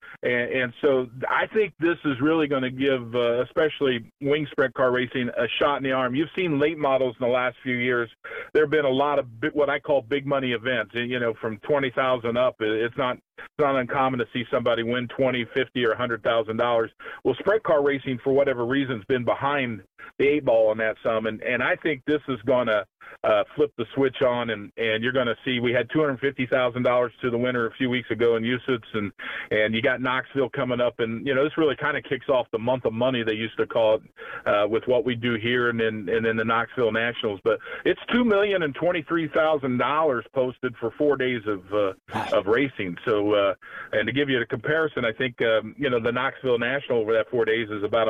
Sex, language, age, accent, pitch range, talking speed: male, English, 40-59, American, 115-140 Hz, 240 wpm